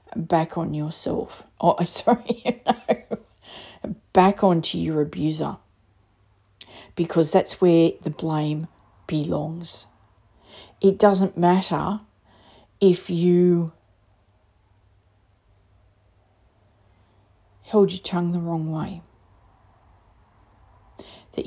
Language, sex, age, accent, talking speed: English, female, 50-69, Australian, 80 wpm